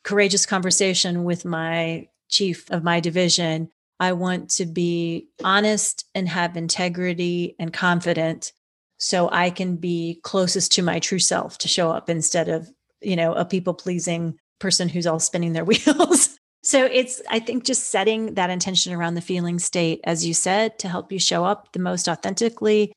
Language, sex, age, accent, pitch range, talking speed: English, female, 30-49, American, 170-205 Hz, 170 wpm